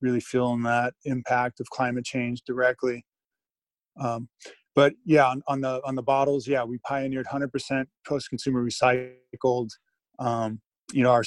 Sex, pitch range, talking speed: male, 120-135 Hz, 150 wpm